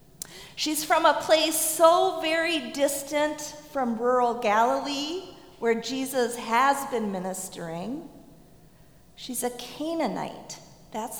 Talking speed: 100 wpm